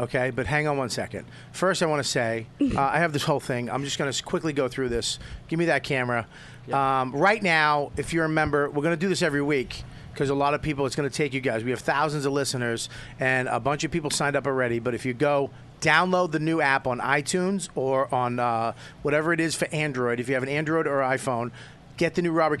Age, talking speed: 40-59, 250 wpm